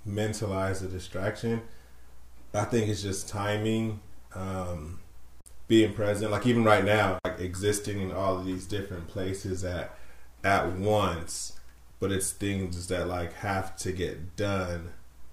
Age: 30-49